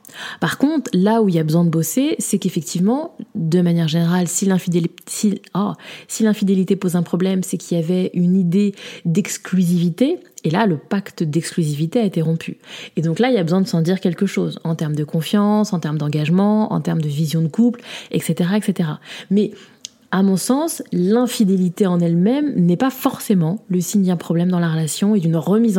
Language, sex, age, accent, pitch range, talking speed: French, female, 20-39, French, 170-230 Hz, 200 wpm